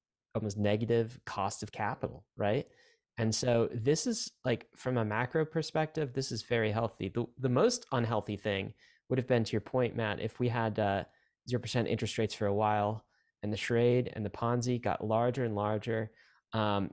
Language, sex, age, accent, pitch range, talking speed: English, male, 20-39, American, 105-130 Hz, 190 wpm